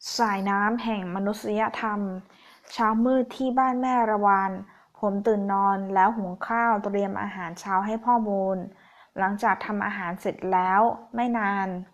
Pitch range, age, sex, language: 195-230 Hz, 20-39, female, Thai